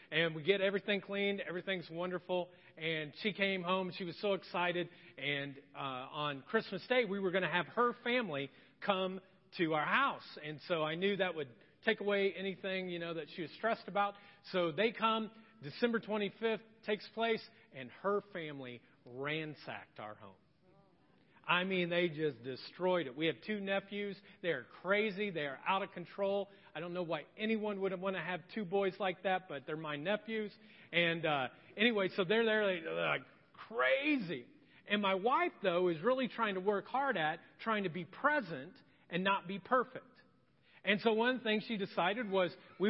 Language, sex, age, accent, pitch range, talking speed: English, male, 40-59, American, 175-225 Hz, 180 wpm